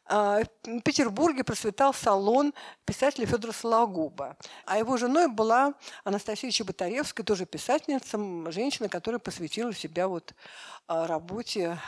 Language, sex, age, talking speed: Russian, female, 50-69, 100 wpm